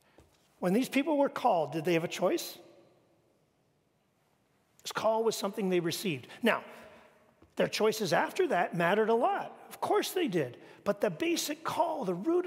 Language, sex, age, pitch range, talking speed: English, male, 40-59, 170-255 Hz, 165 wpm